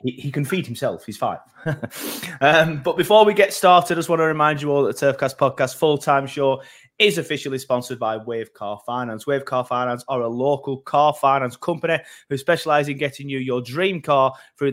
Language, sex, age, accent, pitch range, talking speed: English, male, 20-39, British, 115-145 Hz, 210 wpm